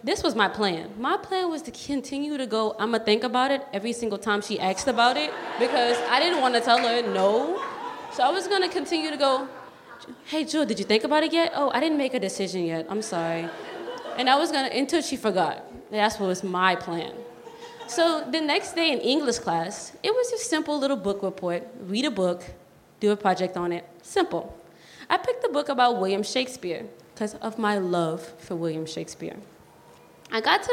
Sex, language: female, English